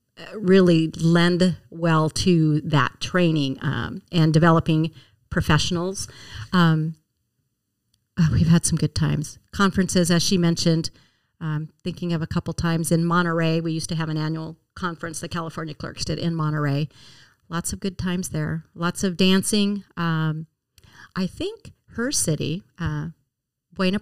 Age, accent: 40-59, American